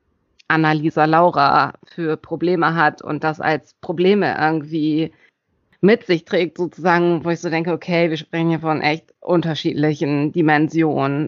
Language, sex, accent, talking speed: German, female, German, 140 wpm